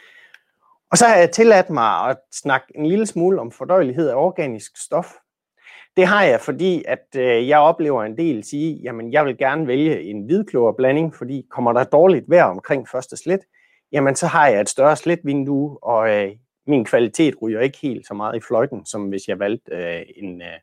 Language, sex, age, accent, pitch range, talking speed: Danish, male, 30-49, native, 115-170 Hz, 185 wpm